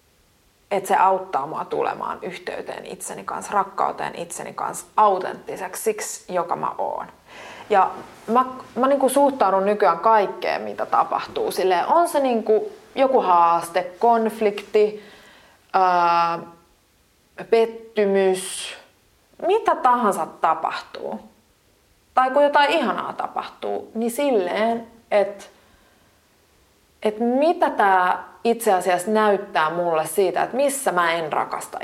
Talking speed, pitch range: 105 wpm, 185-270 Hz